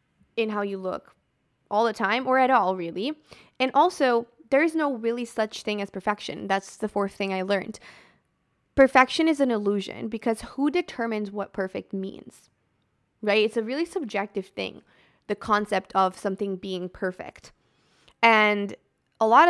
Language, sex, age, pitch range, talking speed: English, female, 20-39, 195-245 Hz, 160 wpm